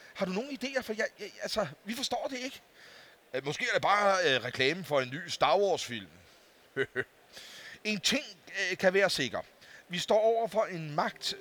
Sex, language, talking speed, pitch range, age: male, Danish, 190 wpm, 145-190 Hz, 40-59